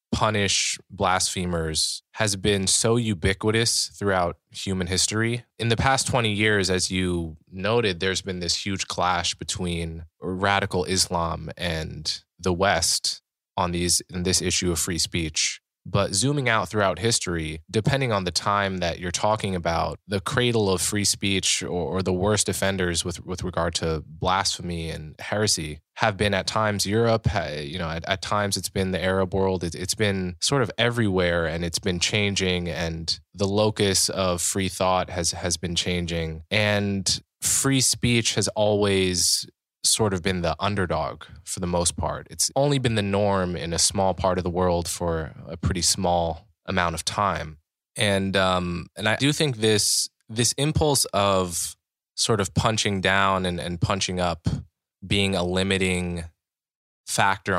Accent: American